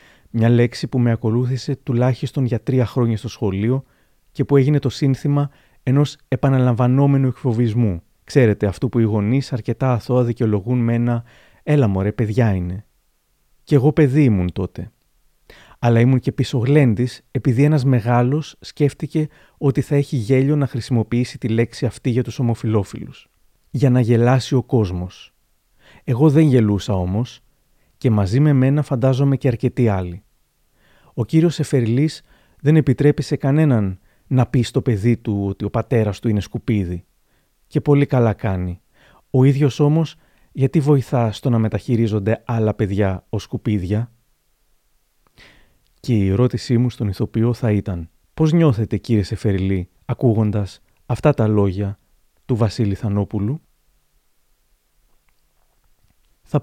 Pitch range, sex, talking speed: 105-135 Hz, male, 135 wpm